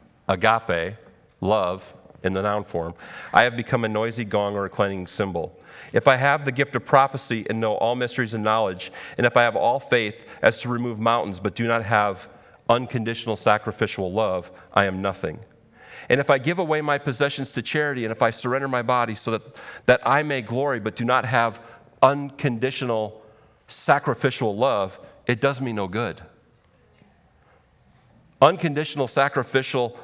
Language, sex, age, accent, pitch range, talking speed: English, male, 40-59, American, 110-145 Hz, 170 wpm